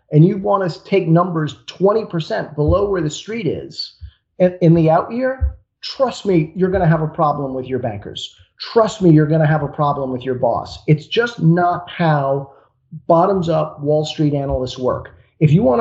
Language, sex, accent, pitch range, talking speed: English, male, American, 140-180 Hz, 195 wpm